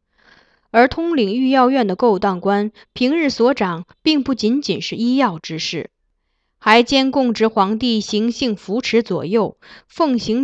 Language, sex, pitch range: Chinese, female, 195-255 Hz